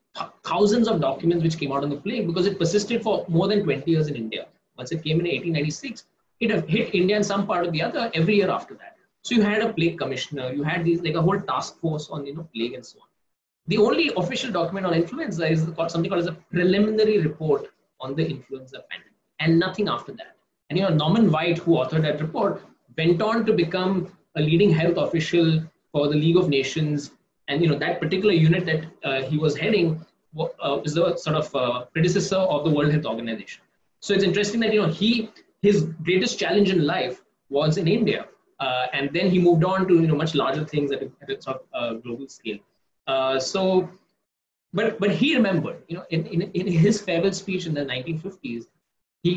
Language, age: English, 20-39